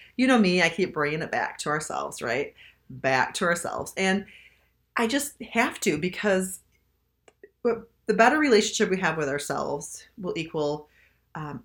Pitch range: 155-205 Hz